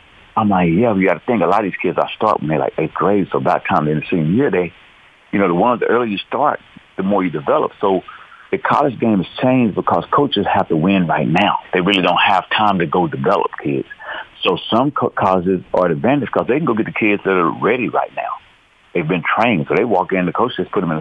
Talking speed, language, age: 265 wpm, English, 60-79